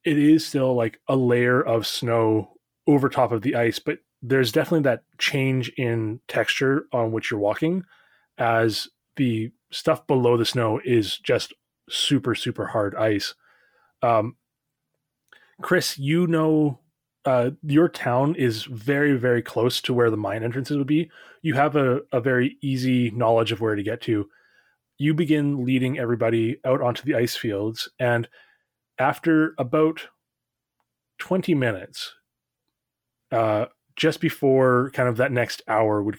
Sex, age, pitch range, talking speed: male, 20-39, 115-145 Hz, 150 wpm